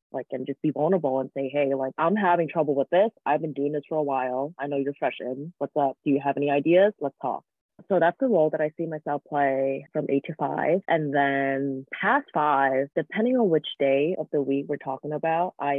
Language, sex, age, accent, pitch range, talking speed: English, female, 20-39, American, 140-180 Hz, 240 wpm